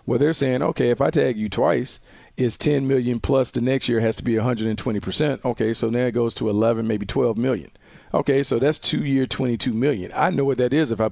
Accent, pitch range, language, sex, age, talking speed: American, 115-135 Hz, English, male, 40-59, 230 wpm